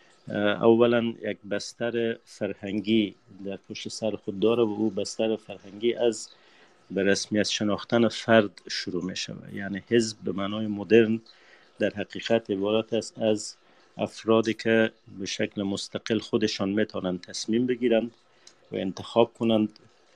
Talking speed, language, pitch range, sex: 125 wpm, Persian, 100-110 Hz, male